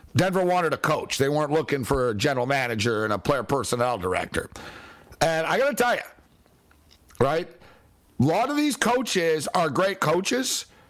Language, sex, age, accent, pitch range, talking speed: English, male, 60-79, American, 165-215 Hz, 170 wpm